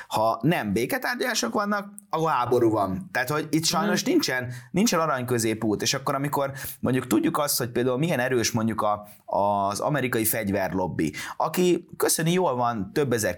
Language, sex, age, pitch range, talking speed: Hungarian, male, 30-49, 110-150 Hz, 155 wpm